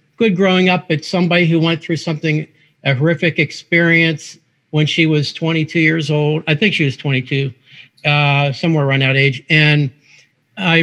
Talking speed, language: 165 wpm, English